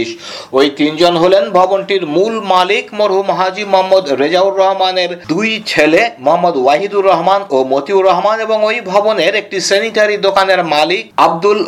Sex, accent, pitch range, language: male, native, 170-205 Hz, Bengali